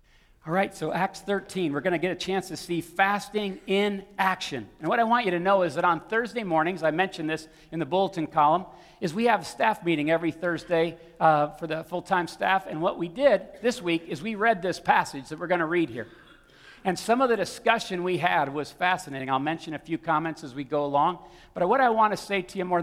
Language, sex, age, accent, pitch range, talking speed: English, male, 50-69, American, 155-190 Hz, 240 wpm